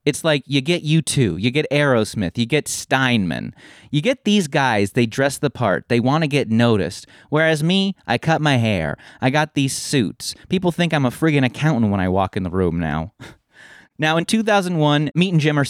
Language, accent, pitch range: English, American, 110-145 Hz